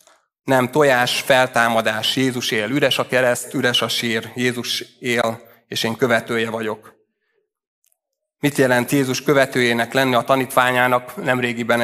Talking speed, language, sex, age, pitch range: 125 wpm, Hungarian, male, 30-49, 115-125 Hz